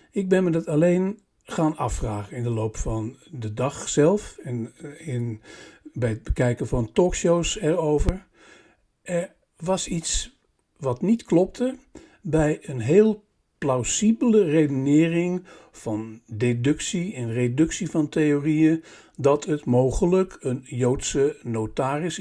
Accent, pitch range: Dutch, 130-175 Hz